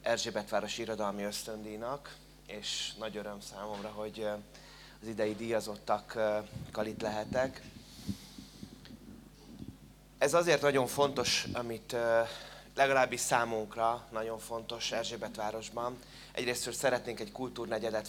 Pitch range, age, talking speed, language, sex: 105-125 Hz, 20-39, 90 wpm, Hungarian, male